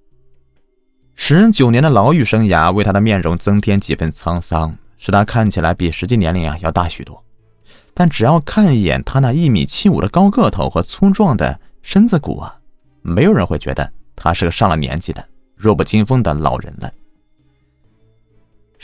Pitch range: 90-130 Hz